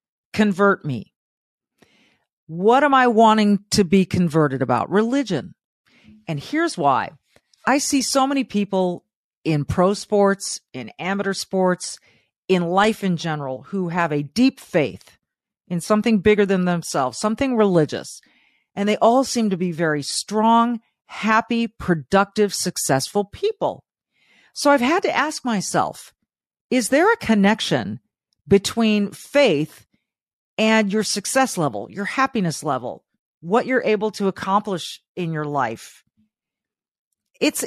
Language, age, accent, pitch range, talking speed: English, 40-59, American, 180-235 Hz, 130 wpm